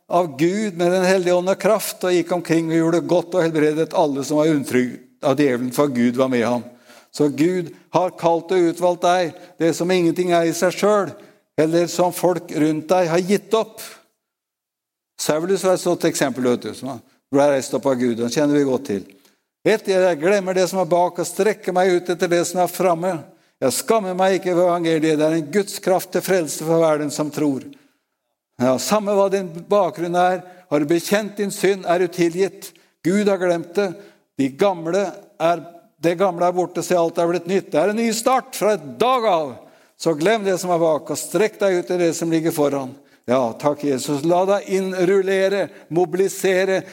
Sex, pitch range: male, 165-190 Hz